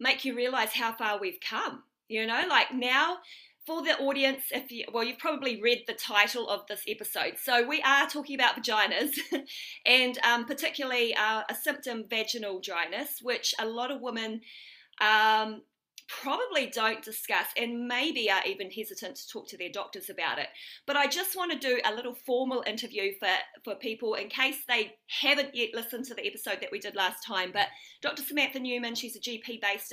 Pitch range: 220-275 Hz